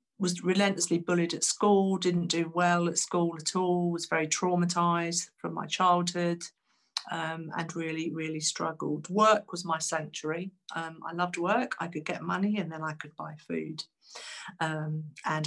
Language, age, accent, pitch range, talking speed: English, 50-69, British, 160-200 Hz, 165 wpm